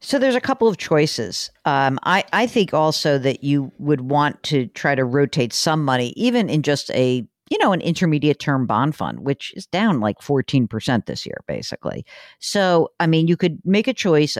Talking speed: 200 wpm